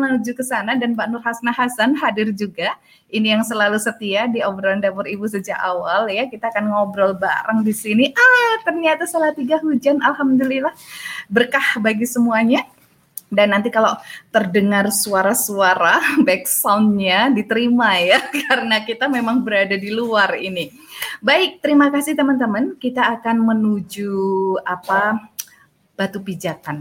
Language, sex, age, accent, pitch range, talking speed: Indonesian, female, 20-39, native, 185-235 Hz, 140 wpm